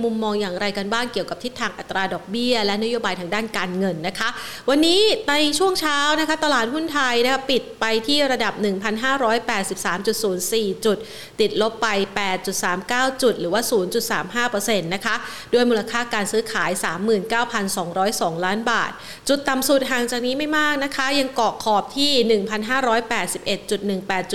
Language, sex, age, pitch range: Thai, female, 30-49, 190-235 Hz